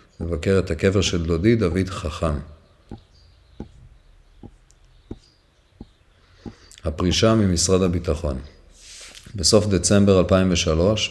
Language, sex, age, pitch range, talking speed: Hebrew, male, 40-59, 85-105 Hz, 70 wpm